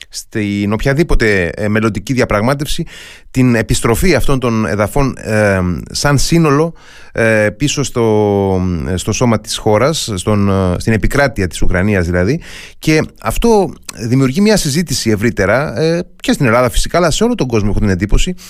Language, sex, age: Greek, male, 30-49